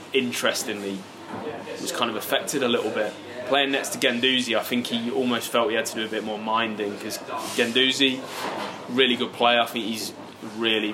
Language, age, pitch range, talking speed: English, 20-39, 105-120 Hz, 185 wpm